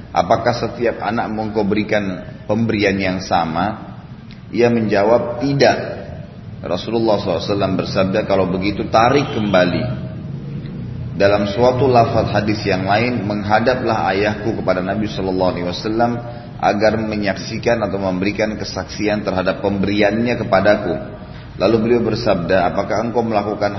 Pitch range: 95-110 Hz